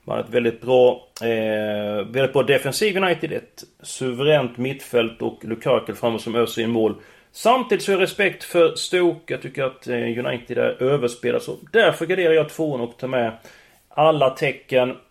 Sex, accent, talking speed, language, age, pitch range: male, native, 175 wpm, Swedish, 30-49, 120-175 Hz